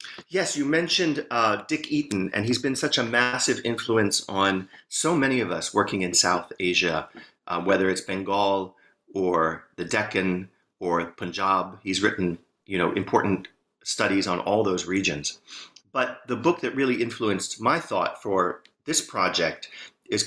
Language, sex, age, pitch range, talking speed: English, male, 40-59, 95-135 Hz, 155 wpm